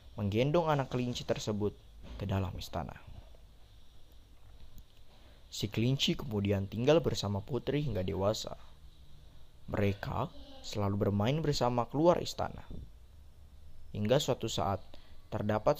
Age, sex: 20-39, male